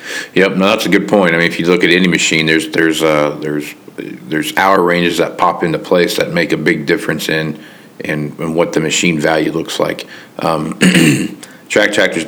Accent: American